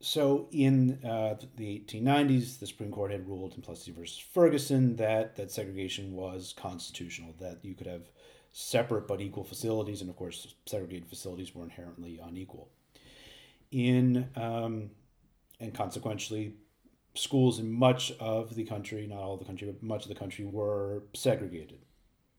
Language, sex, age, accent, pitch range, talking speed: English, male, 30-49, American, 95-125 Hz, 155 wpm